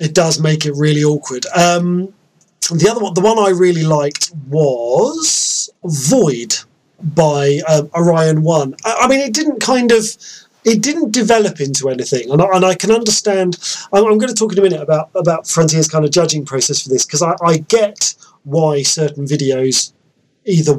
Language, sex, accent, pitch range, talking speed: English, male, British, 145-190 Hz, 185 wpm